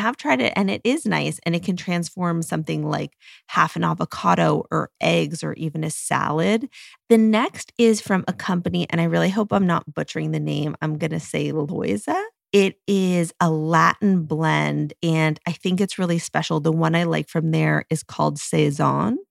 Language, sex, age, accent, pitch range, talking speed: English, female, 30-49, American, 155-190 Hz, 195 wpm